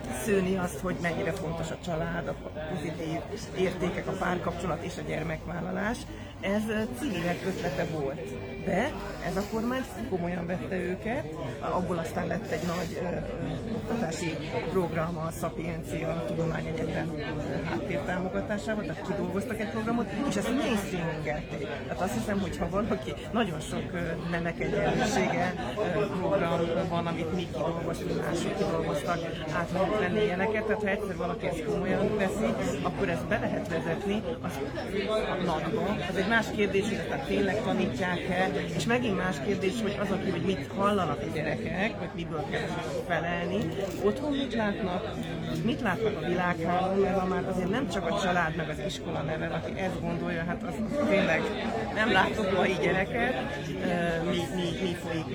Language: Hungarian